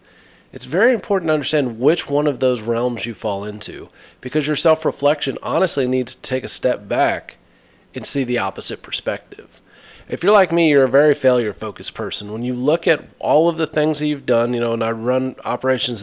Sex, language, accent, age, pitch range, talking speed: male, English, American, 30-49, 120-145 Hz, 200 wpm